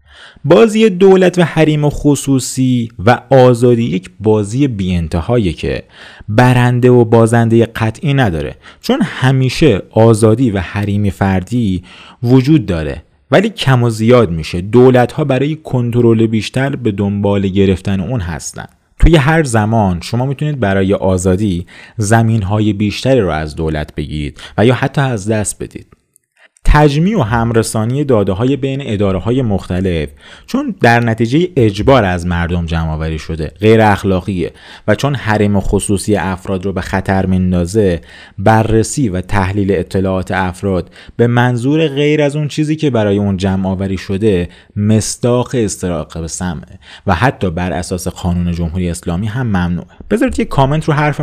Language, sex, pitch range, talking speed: Persian, male, 95-130 Hz, 140 wpm